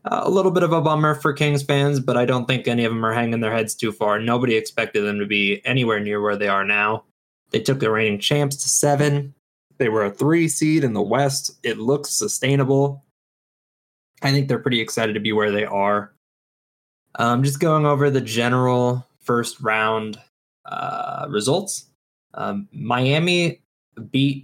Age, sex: 20-39, male